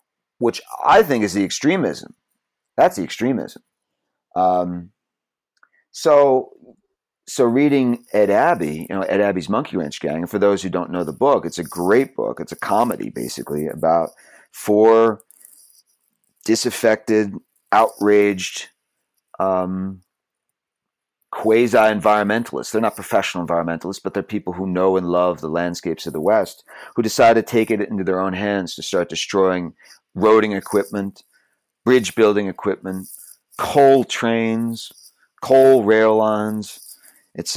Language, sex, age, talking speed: English, male, 40-59, 135 wpm